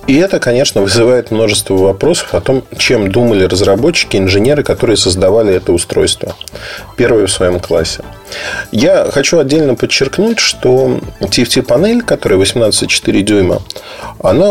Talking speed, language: 125 wpm, Russian